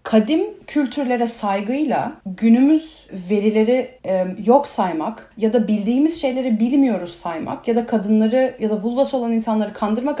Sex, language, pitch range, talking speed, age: female, Turkish, 200-245 Hz, 130 wpm, 40-59